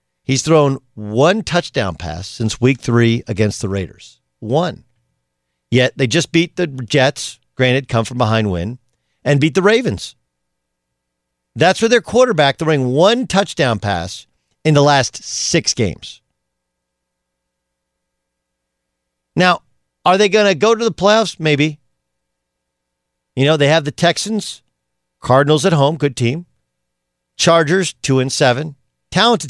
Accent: American